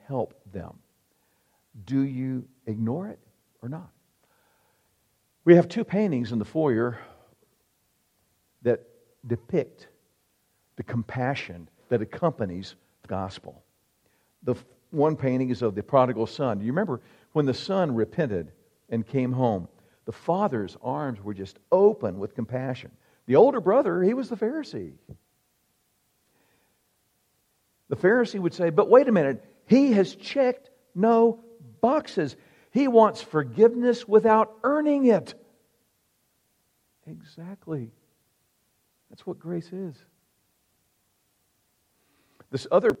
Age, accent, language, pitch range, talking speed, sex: 50-69, American, English, 115-180 Hz, 115 wpm, male